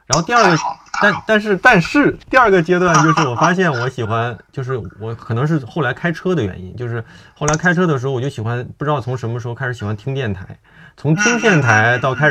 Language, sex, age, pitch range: Chinese, male, 20-39, 110-155 Hz